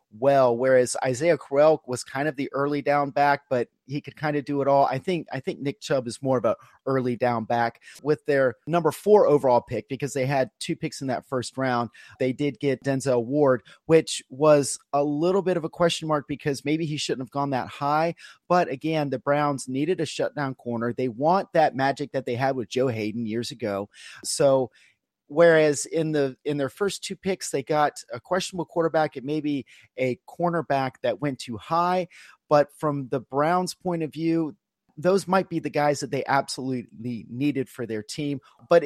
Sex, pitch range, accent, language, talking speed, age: male, 130-160 Hz, American, English, 205 wpm, 30-49